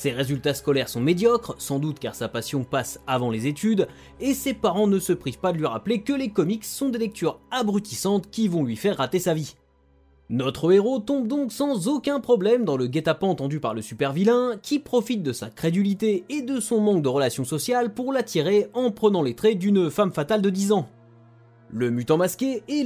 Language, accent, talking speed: French, French, 210 wpm